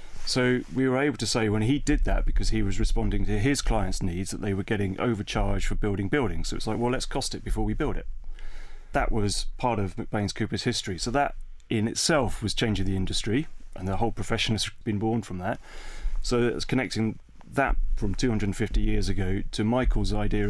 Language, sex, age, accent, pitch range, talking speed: English, male, 30-49, British, 100-120 Hz, 210 wpm